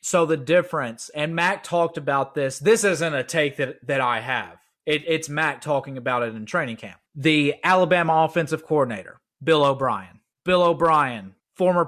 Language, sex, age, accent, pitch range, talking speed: English, male, 30-49, American, 155-190 Hz, 170 wpm